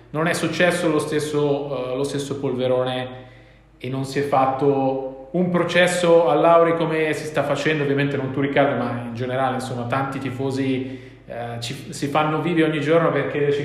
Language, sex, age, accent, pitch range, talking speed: Italian, male, 30-49, native, 140-170 Hz, 180 wpm